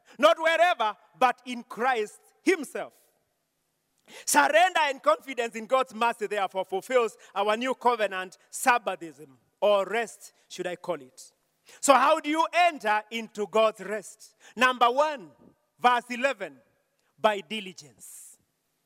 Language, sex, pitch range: English, male, 215-300 Hz